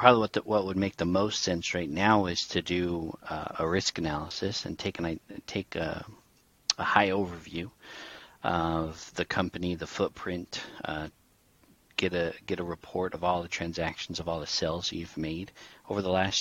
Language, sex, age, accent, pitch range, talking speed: English, male, 40-59, American, 85-100 Hz, 185 wpm